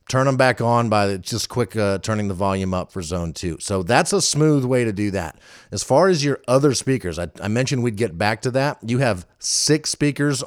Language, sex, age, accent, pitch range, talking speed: English, male, 40-59, American, 105-145 Hz, 235 wpm